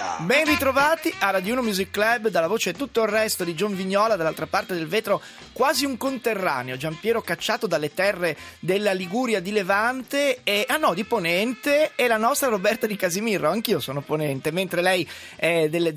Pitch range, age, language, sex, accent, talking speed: 175-240 Hz, 30-49, Italian, male, native, 185 wpm